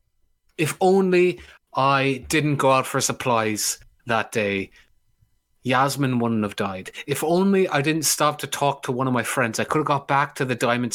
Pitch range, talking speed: 110-145 Hz, 185 wpm